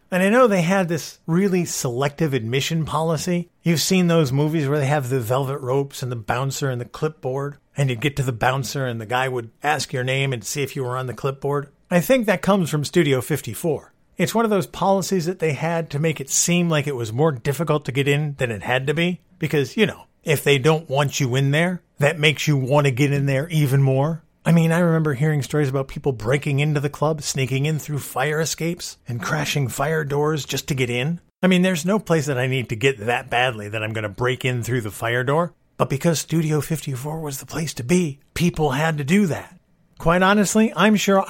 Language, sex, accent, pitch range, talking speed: English, male, American, 135-170 Hz, 240 wpm